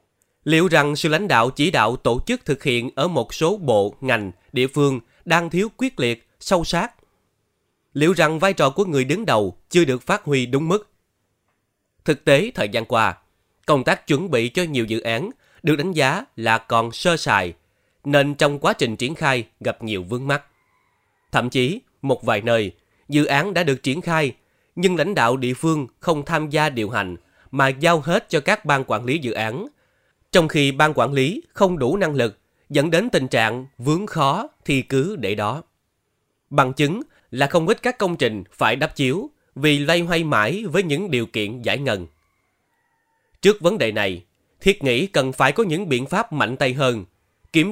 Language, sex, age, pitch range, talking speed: Vietnamese, male, 20-39, 120-170 Hz, 195 wpm